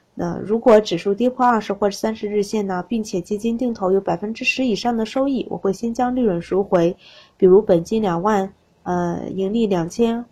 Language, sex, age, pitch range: Chinese, female, 20-39, 180-235 Hz